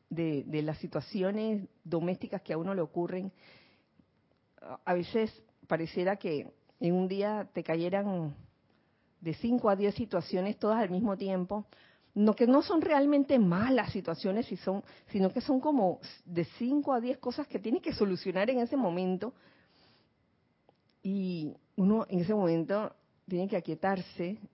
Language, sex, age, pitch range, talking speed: Spanish, female, 40-59, 165-215 Hz, 150 wpm